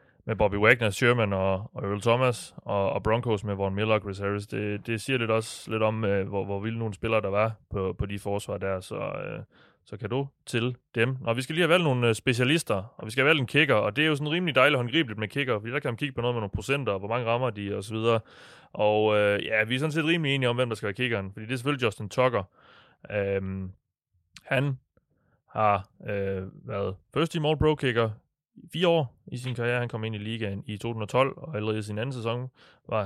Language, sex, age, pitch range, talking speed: Danish, male, 20-39, 105-130 Hz, 245 wpm